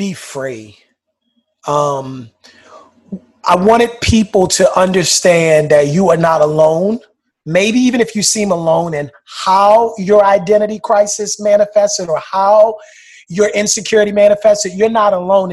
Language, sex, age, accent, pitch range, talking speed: English, male, 30-49, American, 180-245 Hz, 130 wpm